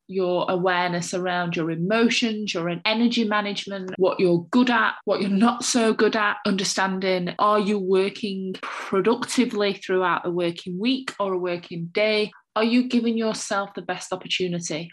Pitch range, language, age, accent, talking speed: 180-220 Hz, English, 20-39, British, 155 wpm